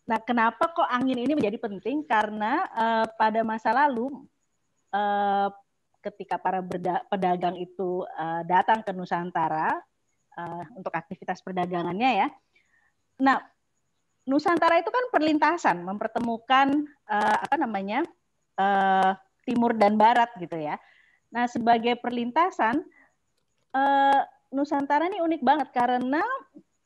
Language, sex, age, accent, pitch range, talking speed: Indonesian, female, 30-49, native, 190-275 Hz, 115 wpm